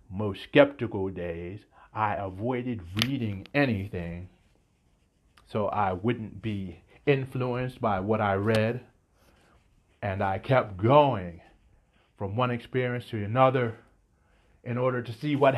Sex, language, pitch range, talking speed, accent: male, English, 95-115 Hz, 115 wpm, American